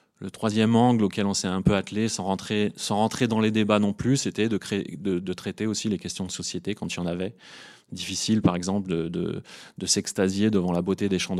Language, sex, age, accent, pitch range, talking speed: French, male, 30-49, French, 95-110 Hz, 225 wpm